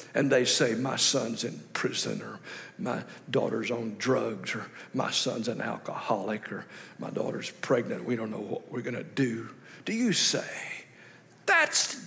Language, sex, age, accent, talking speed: English, male, 60-79, American, 165 wpm